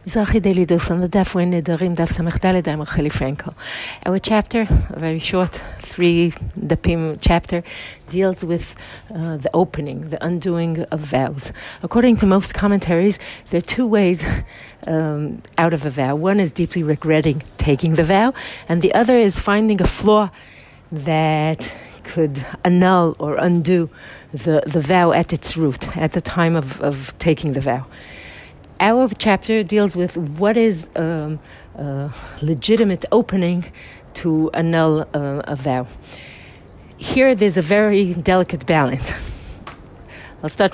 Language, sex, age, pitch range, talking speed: English, female, 50-69, 150-190 Hz, 125 wpm